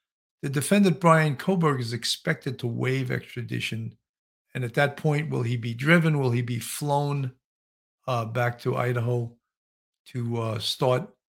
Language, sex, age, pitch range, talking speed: English, male, 50-69, 125-165 Hz, 150 wpm